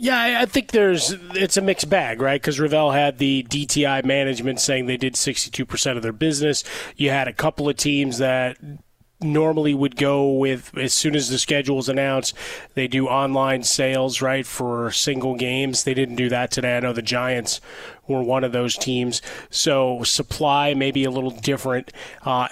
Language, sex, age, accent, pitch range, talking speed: English, male, 30-49, American, 130-145 Hz, 185 wpm